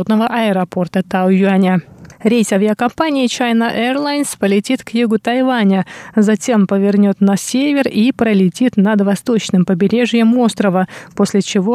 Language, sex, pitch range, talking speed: Russian, female, 190-225 Hz, 110 wpm